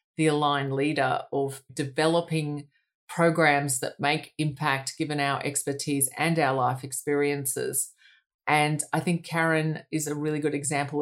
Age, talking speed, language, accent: 30-49, 135 wpm, English, Australian